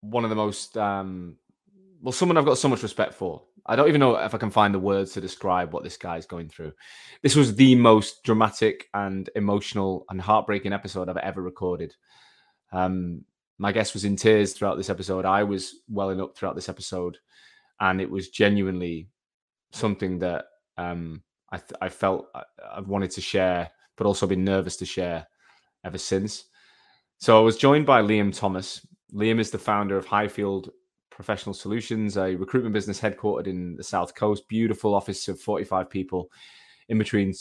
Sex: male